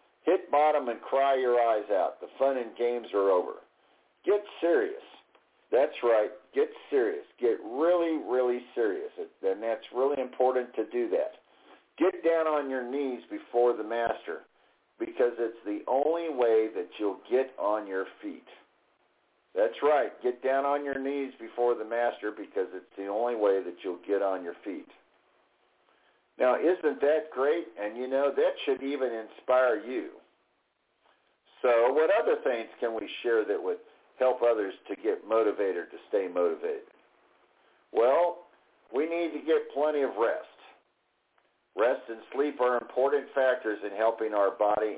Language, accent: English, American